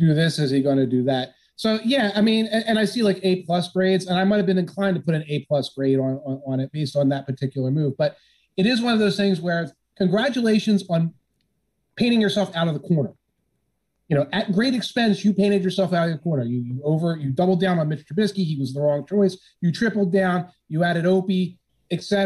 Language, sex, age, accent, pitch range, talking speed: English, male, 30-49, American, 145-195 Hz, 245 wpm